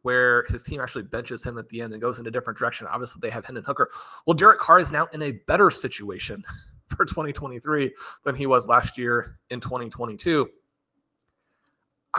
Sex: male